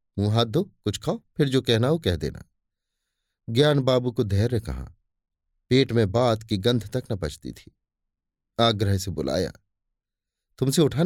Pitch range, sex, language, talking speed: 95-135 Hz, male, Hindi, 150 wpm